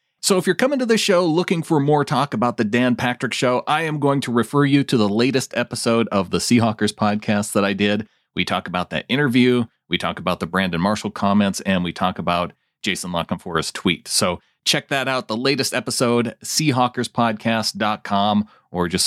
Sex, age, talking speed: male, 30-49, 195 wpm